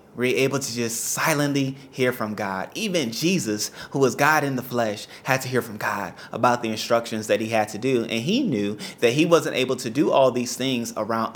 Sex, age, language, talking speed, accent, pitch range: male, 30-49, English, 220 wpm, American, 110-130 Hz